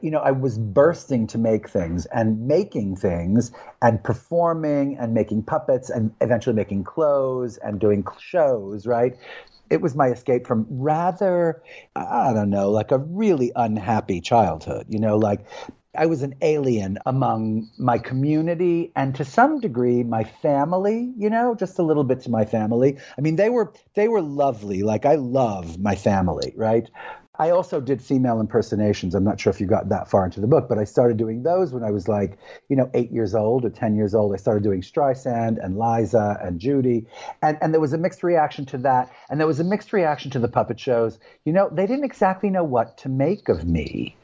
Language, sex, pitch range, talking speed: English, male, 110-150 Hz, 200 wpm